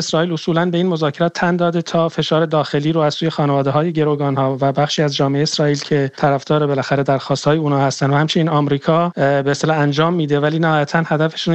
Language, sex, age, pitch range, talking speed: English, male, 40-59, 135-160 Hz, 185 wpm